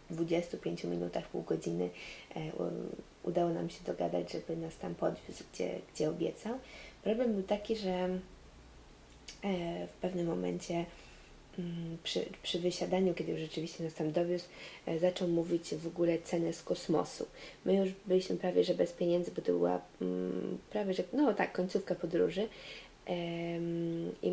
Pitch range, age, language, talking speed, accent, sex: 150-180 Hz, 20-39, Polish, 135 wpm, native, female